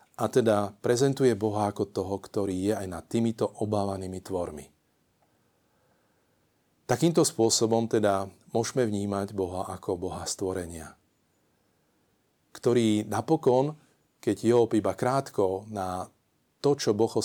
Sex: male